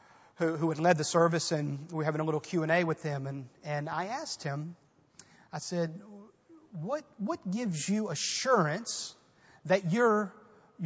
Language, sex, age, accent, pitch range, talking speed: English, male, 40-59, American, 155-190 Hz, 170 wpm